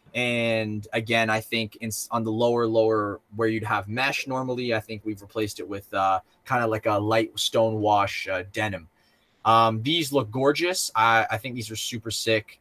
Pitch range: 100-115 Hz